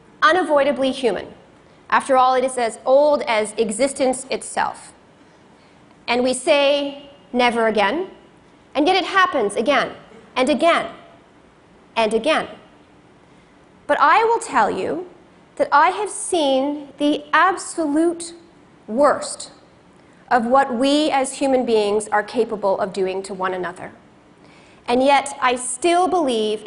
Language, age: Chinese, 30-49